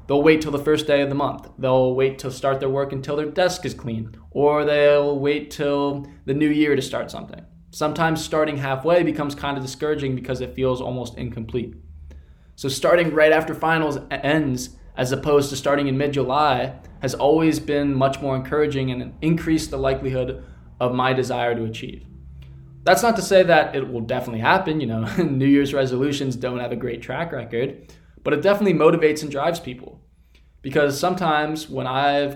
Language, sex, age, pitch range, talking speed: English, male, 20-39, 120-150 Hz, 185 wpm